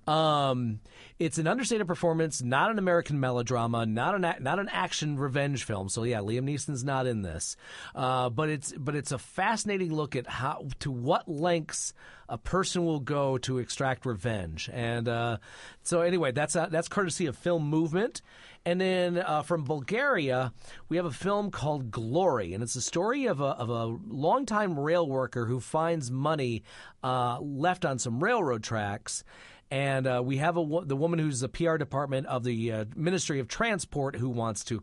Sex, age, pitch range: male, 40-59, 125-170 Hz